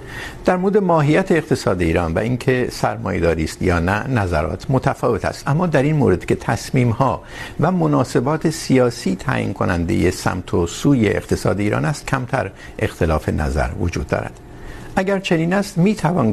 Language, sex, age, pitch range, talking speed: Urdu, male, 60-79, 95-145 Hz, 145 wpm